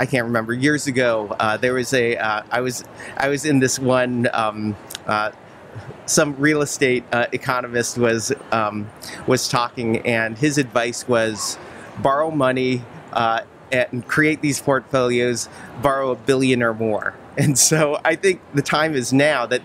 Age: 30-49